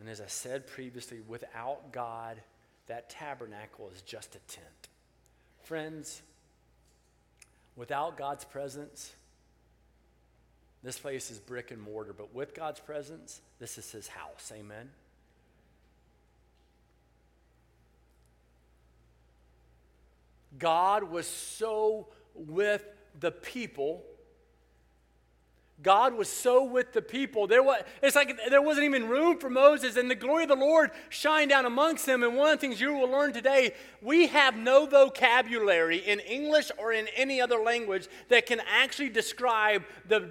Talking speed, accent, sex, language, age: 135 wpm, American, male, English, 40-59